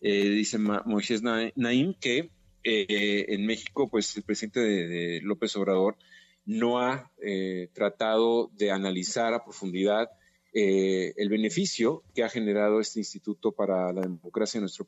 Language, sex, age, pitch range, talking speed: Spanish, male, 40-59, 100-115 Hz, 135 wpm